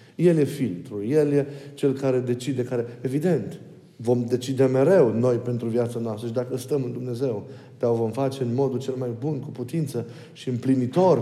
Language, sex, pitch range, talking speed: Romanian, male, 115-145 Hz, 180 wpm